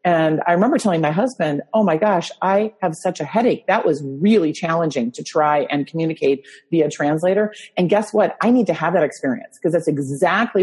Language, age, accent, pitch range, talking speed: English, 40-59, American, 155-205 Hz, 205 wpm